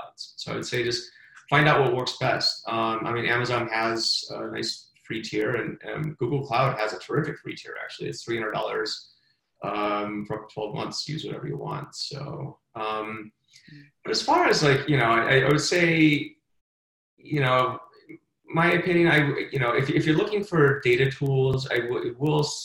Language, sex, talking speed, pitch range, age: English, male, 185 wpm, 115-145 Hz, 20-39